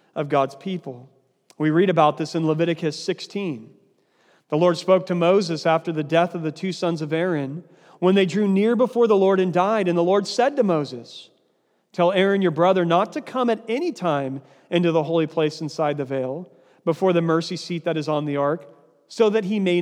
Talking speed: 210 wpm